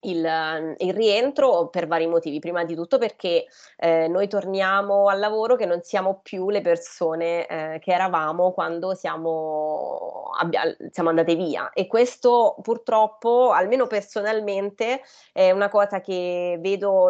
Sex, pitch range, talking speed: female, 175-210 Hz, 140 wpm